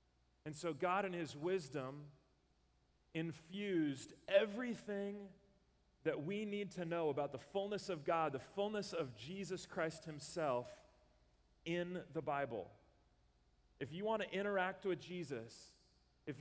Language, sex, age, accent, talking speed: English, male, 40-59, American, 130 wpm